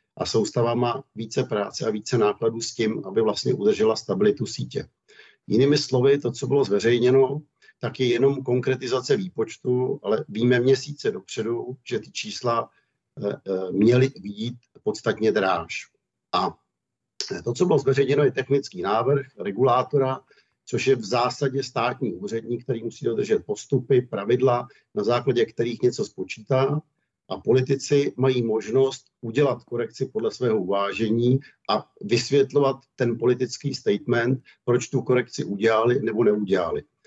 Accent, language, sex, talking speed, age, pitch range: native, Czech, male, 135 wpm, 50-69, 120-135 Hz